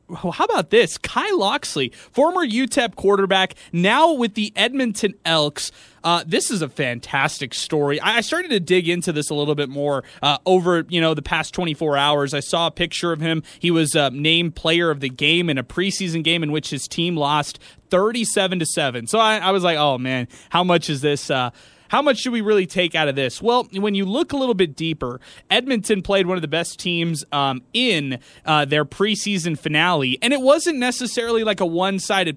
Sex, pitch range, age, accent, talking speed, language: male, 155-200 Hz, 20-39, American, 210 wpm, English